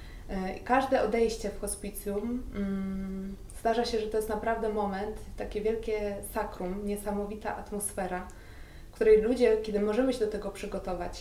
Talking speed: 130 wpm